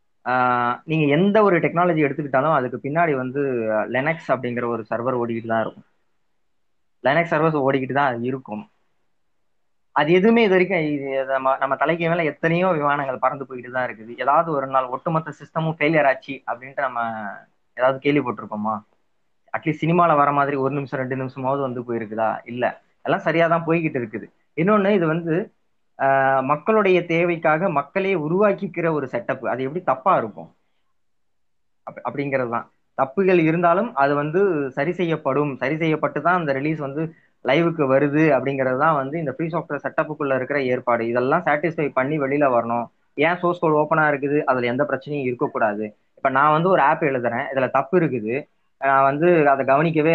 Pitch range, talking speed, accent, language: 130-160 Hz, 145 wpm, native, Tamil